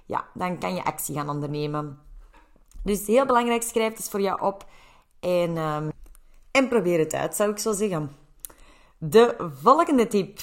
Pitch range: 170-235 Hz